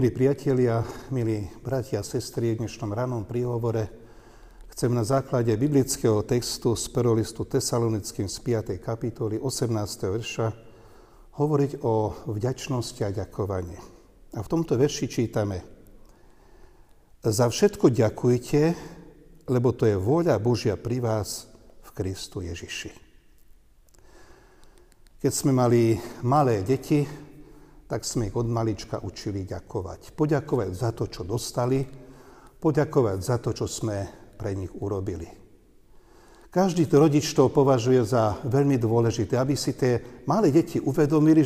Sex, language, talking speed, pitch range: male, Slovak, 120 wpm, 110-140 Hz